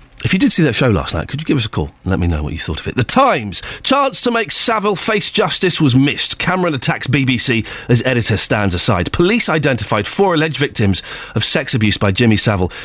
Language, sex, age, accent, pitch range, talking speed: English, male, 40-59, British, 100-155 Hz, 240 wpm